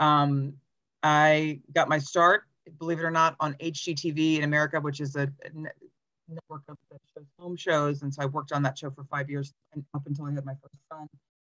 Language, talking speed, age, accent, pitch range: English, 205 wpm, 40-59, American, 140-165 Hz